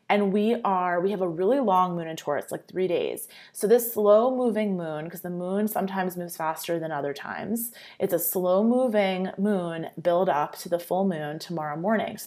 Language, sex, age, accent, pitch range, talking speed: English, female, 20-39, American, 170-215 Hz, 195 wpm